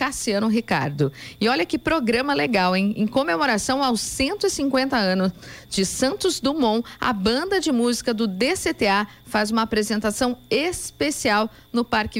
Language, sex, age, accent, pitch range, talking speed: Portuguese, female, 40-59, Brazilian, 205-260 Hz, 140 wpm